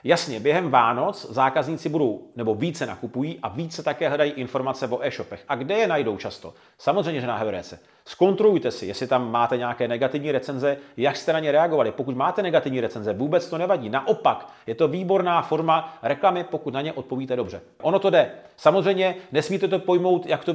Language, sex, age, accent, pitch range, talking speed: Czech, male, 40-59, native, 130-180 Hz, 185 wpm